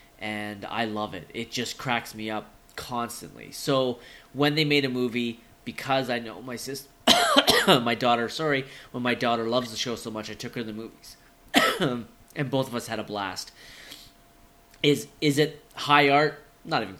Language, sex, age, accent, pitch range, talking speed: English, male, 20-39, American, 115-145 Hz, 185 wpm